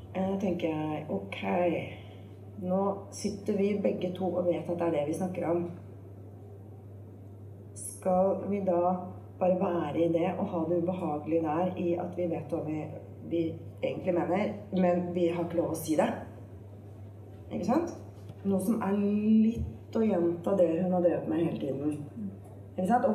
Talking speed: 175 wpm